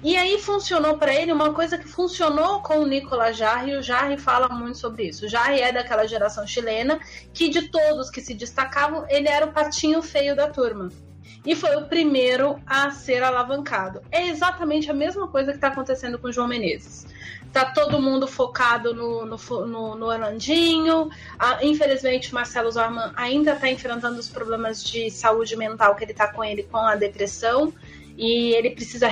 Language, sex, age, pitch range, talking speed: Portuguese, female, 30-49, 225-295 Hz, 185 wpm